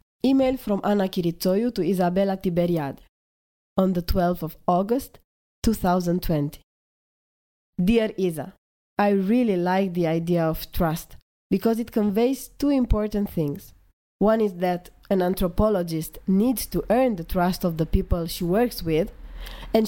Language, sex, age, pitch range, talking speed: English, female, 20-39, 170-210 Hz, 135 wpm